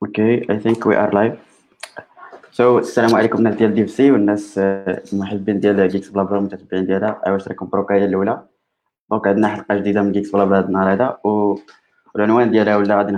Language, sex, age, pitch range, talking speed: Arabic, male, 20-39, 100-110 Hz, 50 wpm